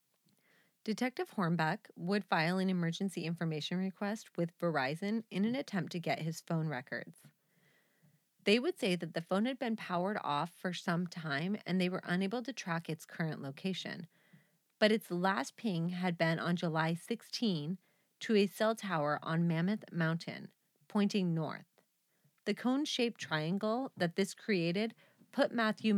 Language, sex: English, female